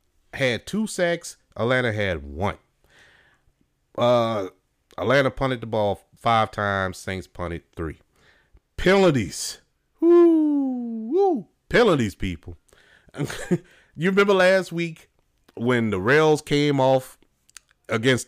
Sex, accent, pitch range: male, American, 100-135 Hz